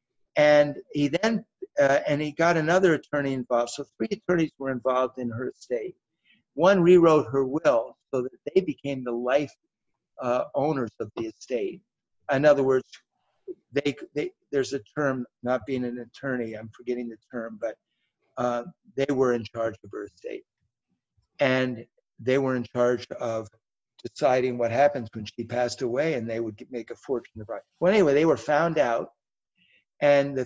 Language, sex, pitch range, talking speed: English, male, 125-175 Hz, 165 wpm